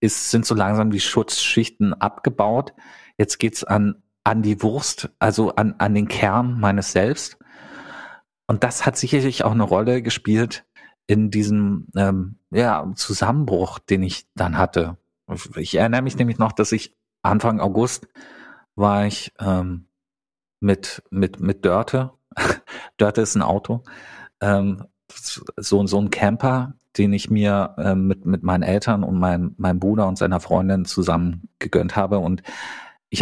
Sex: male